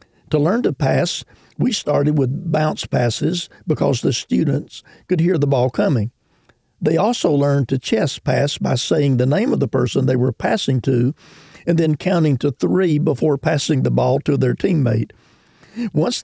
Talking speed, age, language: 175 wpm, 50-69, English